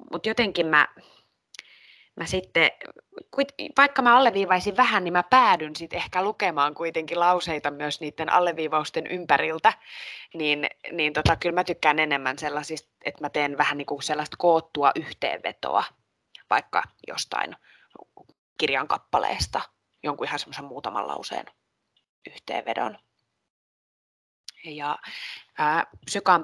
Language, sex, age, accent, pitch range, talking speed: Finnish, female, 20-39, native, 155-190 Hz, 115 wpm